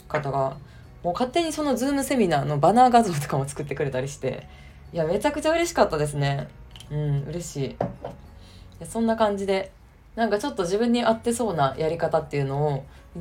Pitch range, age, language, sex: 140-220 Hz, 20-39, Japanese, female